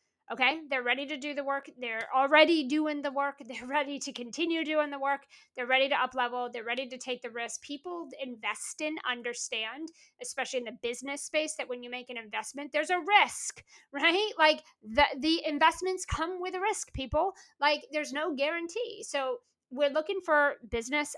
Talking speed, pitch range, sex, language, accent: 190 wpm, 255-320 Hz, female, English, American